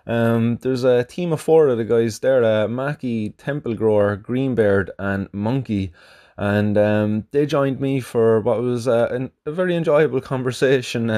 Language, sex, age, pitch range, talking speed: English, male, 20-39, 100-120 Hz, 165 wpm